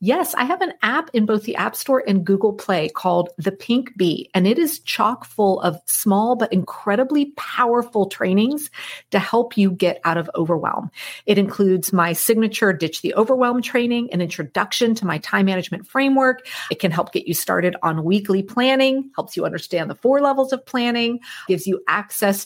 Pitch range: 175-245 Hz